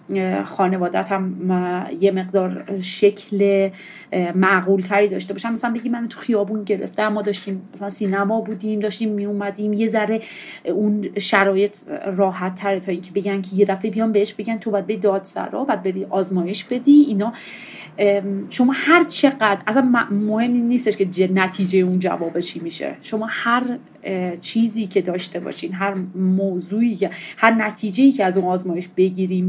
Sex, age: female, 30-49